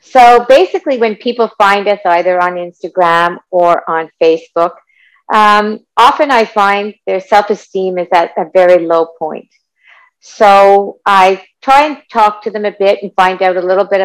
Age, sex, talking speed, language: 50-69, female, 165 wpm, English